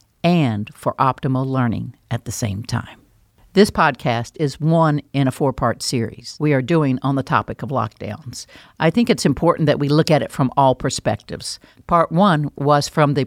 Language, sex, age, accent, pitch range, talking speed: English, female, 50-69, American, 125-165 Hz, 185 wpm